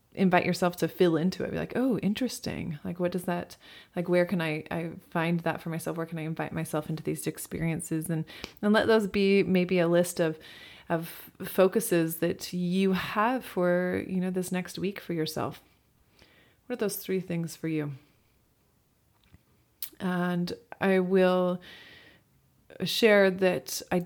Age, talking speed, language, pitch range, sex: 30-49, 165 wpm, English, 170-205 Hz, female